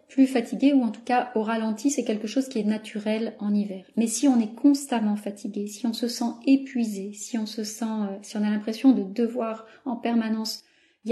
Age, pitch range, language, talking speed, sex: 30-49, 205-265 Hz, French, 215 wpm, female